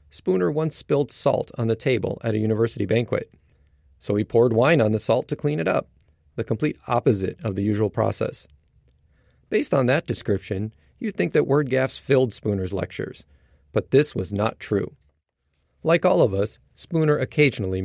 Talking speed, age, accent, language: 175 wpm, 40-59, American, English